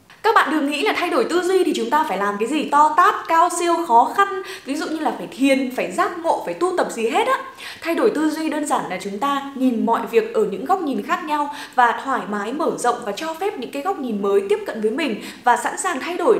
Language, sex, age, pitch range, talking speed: Vietnamese, female, 10-29, 245-385 Hz, 280 wpm